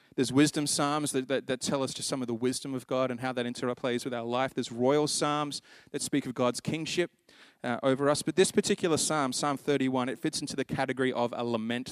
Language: English